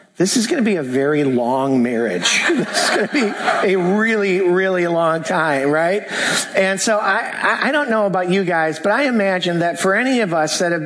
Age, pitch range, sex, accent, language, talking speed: 50-69, 160-210 Hz, male, American, English, 215 wpm